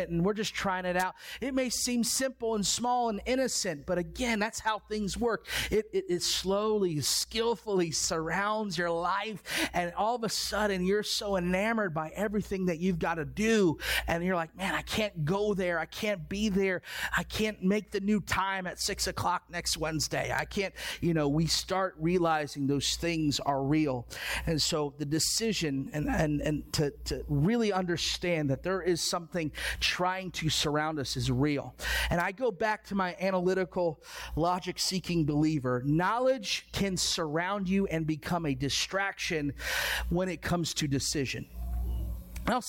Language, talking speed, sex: English, 170 wpm, male